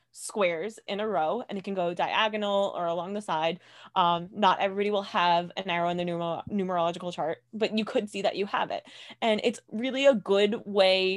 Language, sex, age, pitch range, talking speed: English, female, 20-39, 170-205 Hz, 205 wpm